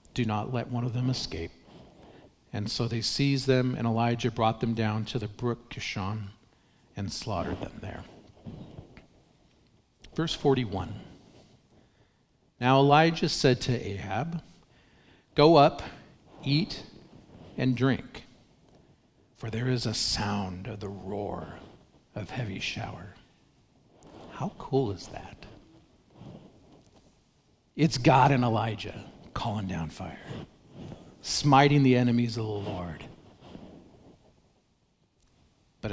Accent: American